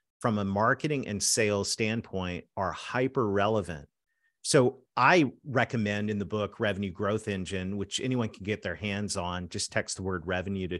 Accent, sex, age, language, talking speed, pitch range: American, male, 40-59, English, 170 wpm, 95-125 Hz